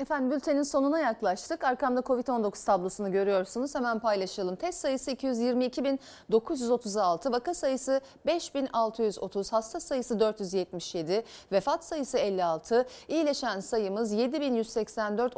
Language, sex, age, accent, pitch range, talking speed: Turkish, female, 40-59, native, 205-275 Hz, 100 wpm